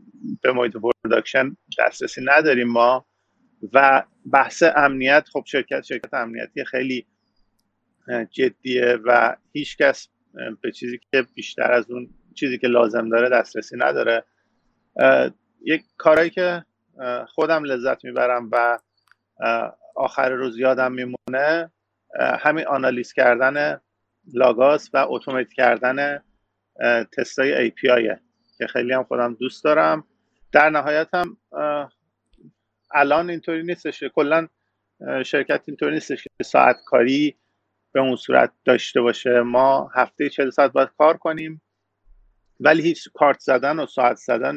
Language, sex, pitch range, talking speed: Persian, male, 120-155 Hz, 120 wpm